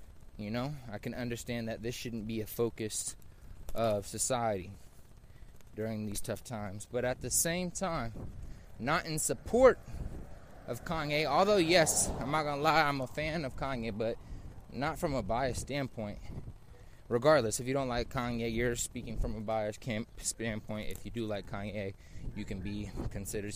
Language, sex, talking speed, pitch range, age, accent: English, male, 170 wpm, 105-135 Hz, 20-39, American